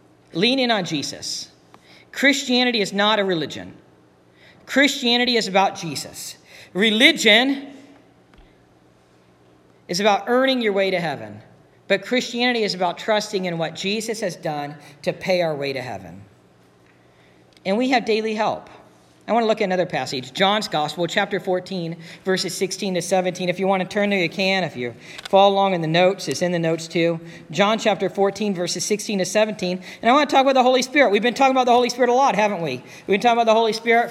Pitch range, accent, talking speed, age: 170-225 Hz, American, 195 wpm, 40-59